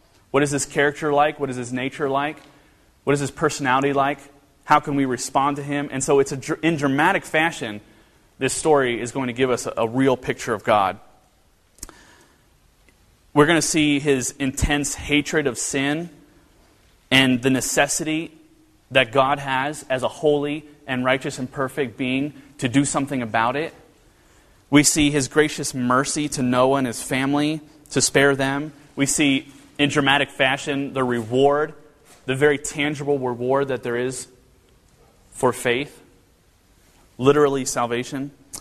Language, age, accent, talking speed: English, 30-49, American, 155 wpm